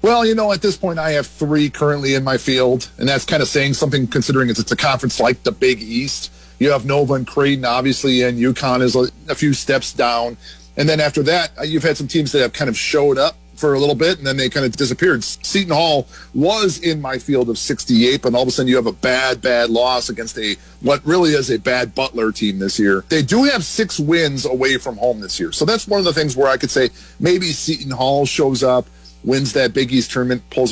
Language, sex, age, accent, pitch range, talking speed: English, male, 40-59, American, 120-150 Hz, 245 wpm